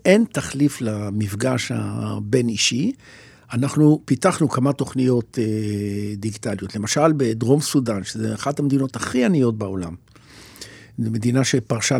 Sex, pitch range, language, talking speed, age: male, 110-150 Hz, Hebrew, 100 wpm, 60-79